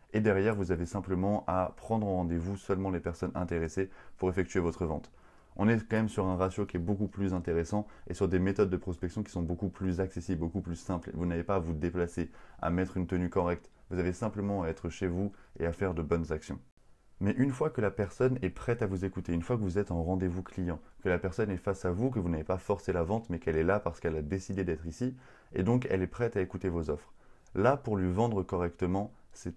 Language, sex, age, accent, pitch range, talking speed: French, male, 20-39, French, 85-105 Hz, 255 wpm